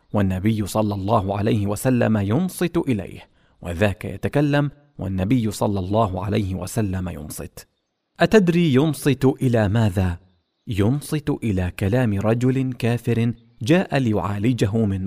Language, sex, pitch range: English, male, 100-130 Hz